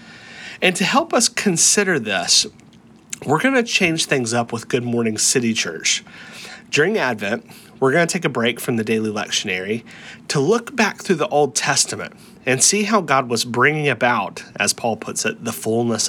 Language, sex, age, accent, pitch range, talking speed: English, male, 30-49, American, 115-175 Hz, 185 wpm